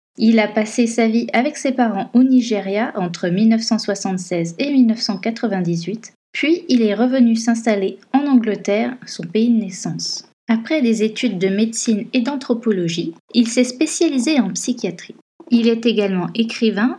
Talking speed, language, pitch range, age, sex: 145 wpm, French, 190-245 Hz, 20-39, female